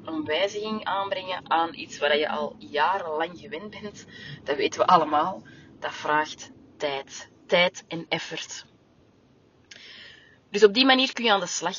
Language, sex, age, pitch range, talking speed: Dutch, female, 20-39, 160-205 Hz, 155 wpm